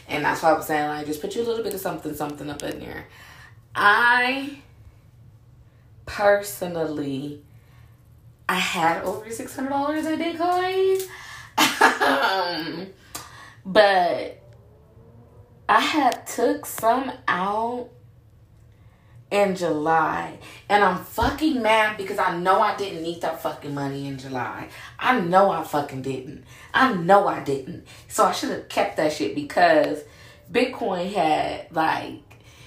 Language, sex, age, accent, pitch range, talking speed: English, female, 20-39, American, 120-200 Hz, 130 wpm